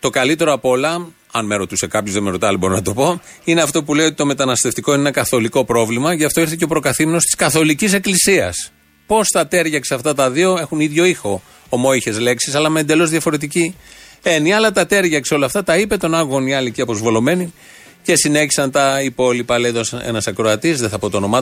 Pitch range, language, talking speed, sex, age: 120-165 Hz, Greek, 215 wpm, male, 30-49